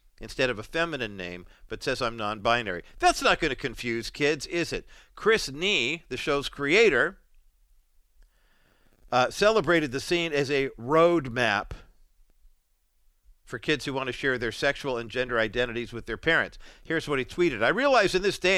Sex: male